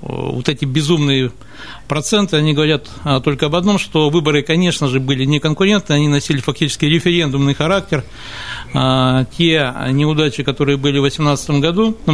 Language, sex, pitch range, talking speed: Russian, male, 135-165 Hz, 145 wpm